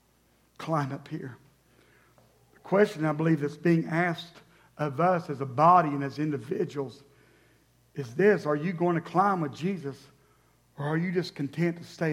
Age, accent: 50-69, American